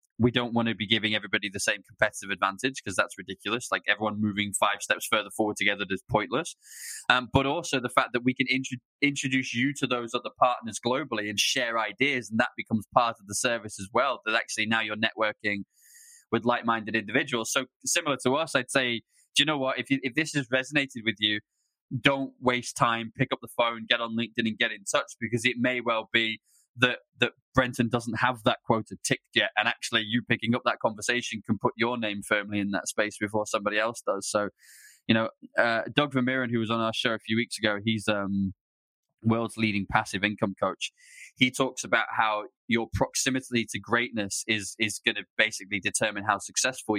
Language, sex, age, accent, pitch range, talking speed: English, male, 20-39, British, 110-125 Hz, 205 wpm